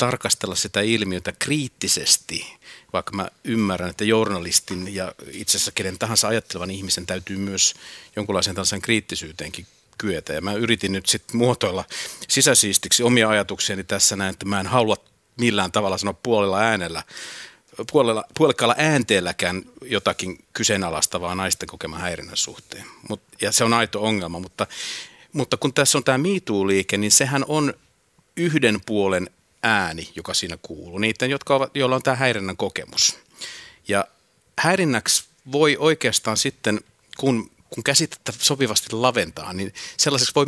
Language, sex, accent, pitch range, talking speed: Finnish, male, native, 100-135 Hz, 140 wpm